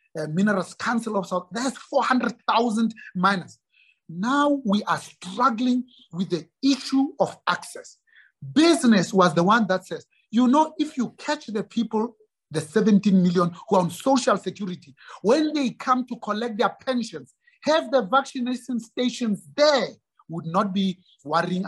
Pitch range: 175-245 Hz